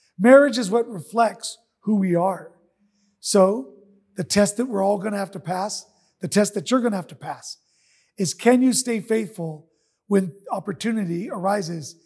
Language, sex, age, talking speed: English, male, 40-59, 165 wpm